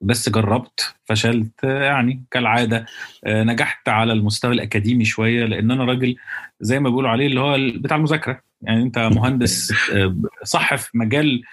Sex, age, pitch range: male, 30-49, 110-135 Hz